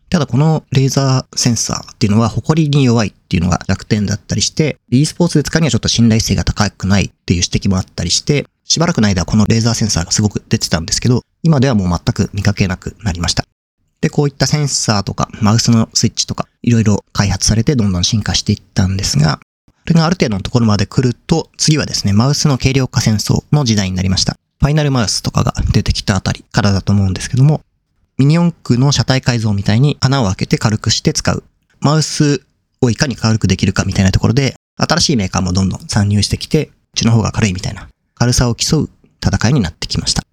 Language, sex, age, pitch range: Japanese, male, 40-59, 100-130 Hz